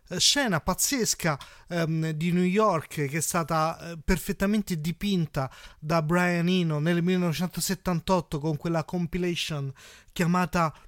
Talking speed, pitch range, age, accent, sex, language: 115 wpm, 155-185 Hz, 30-49, native, male, Italian